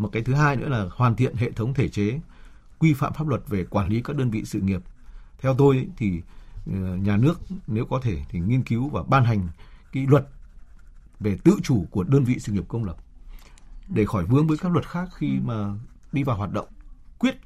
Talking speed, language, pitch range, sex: 220 wpm, Vietnamese, 100-135 Hz, male